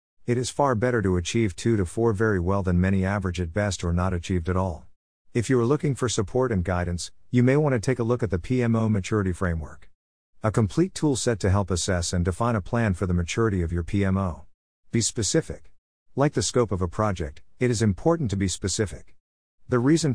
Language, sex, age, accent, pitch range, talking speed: English, male, 50-69, American, 90-115 Hz, 215 wpm